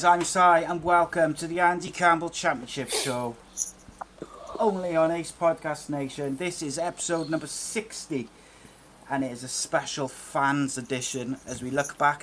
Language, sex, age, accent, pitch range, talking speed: English, male, 30-49, British, 130-155 Hz, 150 wpm